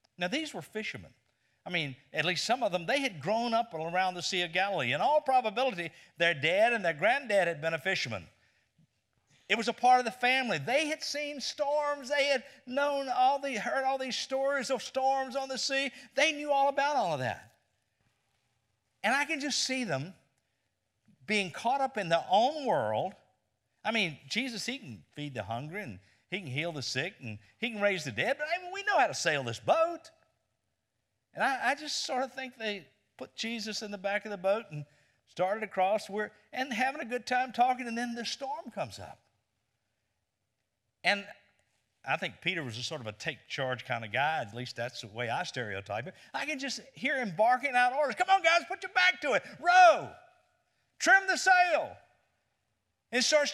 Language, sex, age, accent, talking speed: English, male, 50-69, American, 205 wpm